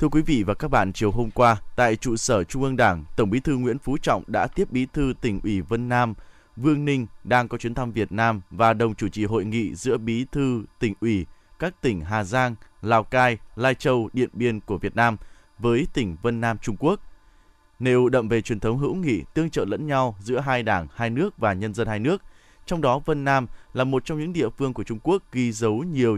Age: 20-39